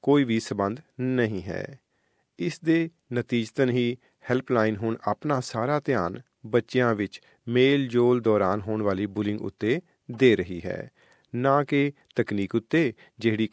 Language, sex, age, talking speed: Punjabi, male, 40-59, 135 wpm